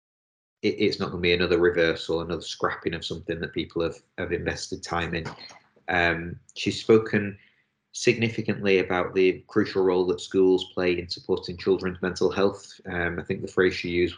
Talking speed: 175 wpm